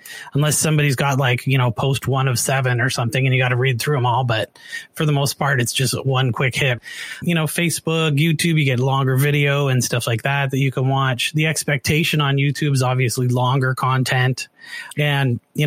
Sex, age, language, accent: male, 30-49, English, American